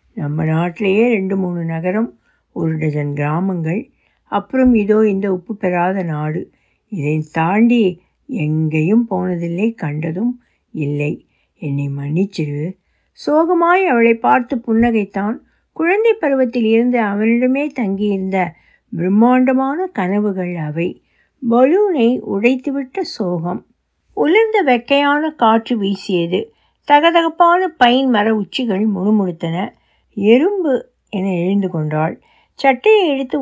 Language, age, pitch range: Tamil, 60-79, 180-255 Hz